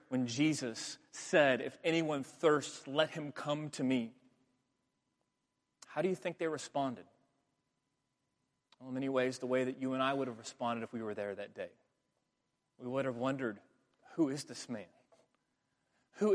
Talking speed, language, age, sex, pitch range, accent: 165 wpm, English, 30-49, male, 130-175 Hz, American